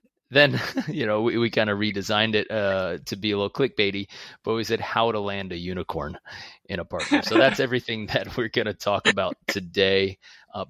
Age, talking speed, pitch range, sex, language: 30-49, 200 wpm, 95-110 Hz, male, English